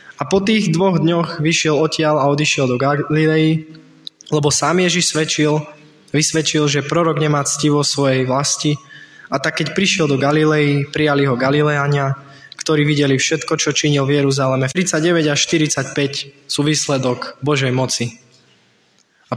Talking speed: 145 wpm